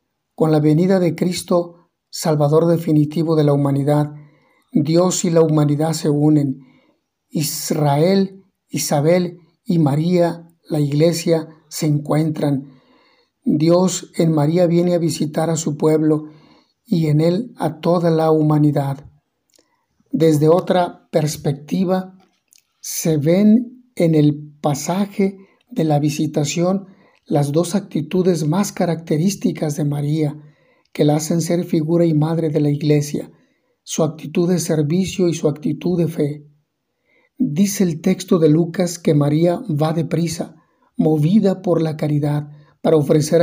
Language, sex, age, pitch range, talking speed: Spanish, male, 60-79, 150-175 Hz, 125 wpm